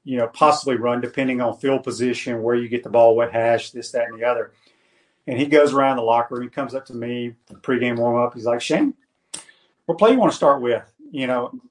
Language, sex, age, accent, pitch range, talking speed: English, male, 40-59, American, 120-150 Hz, 245 wpm